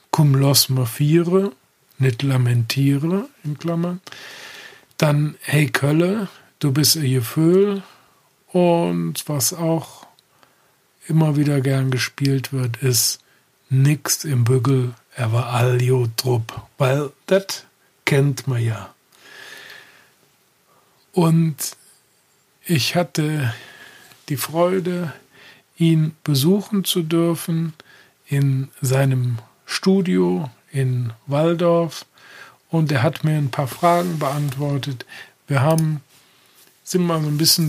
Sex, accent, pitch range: male, German, 130-165 Hz